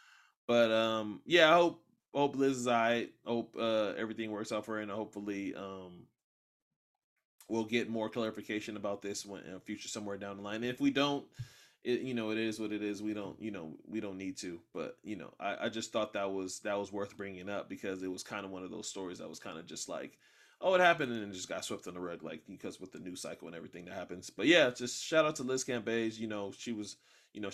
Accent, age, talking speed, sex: American, 20-39, 260 wpm, male